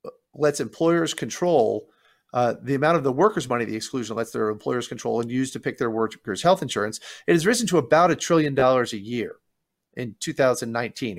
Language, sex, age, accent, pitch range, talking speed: English, male, 40-59, American, 120-155 Hz, 195 wpm